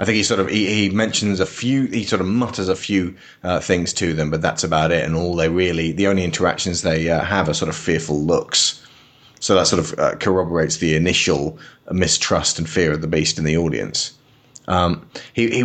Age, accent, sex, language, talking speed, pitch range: 30-49, British, male, English, 225 wpm, 85-110 Hz